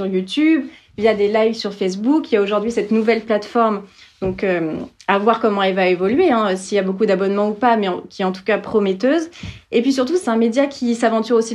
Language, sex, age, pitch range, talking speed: French, female, 30-49, 195-235 Hz, 245 wpm